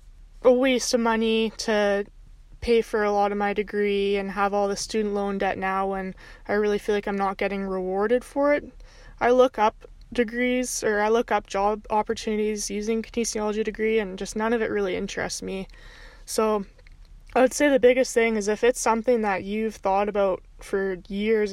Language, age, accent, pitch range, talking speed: English, 20-39, American, 200-235 Hz, 190 wpm